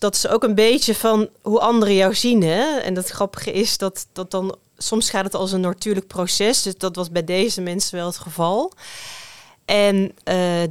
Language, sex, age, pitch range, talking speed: Dutch, female, 30-49, 175-205 Hz, 200 wpm